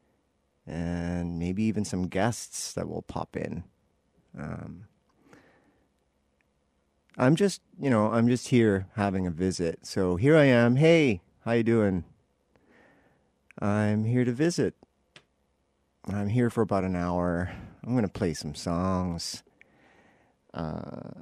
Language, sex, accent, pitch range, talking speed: English, male, American, 85-110 Hz, 125 wpm